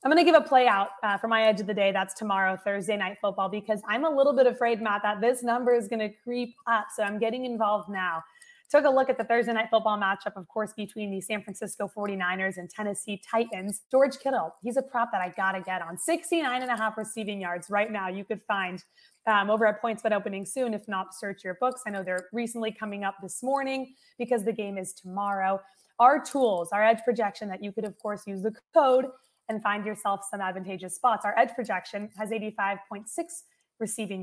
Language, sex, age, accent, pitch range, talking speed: English, female, 20-39, American, 195-245 Hz, 230 wpm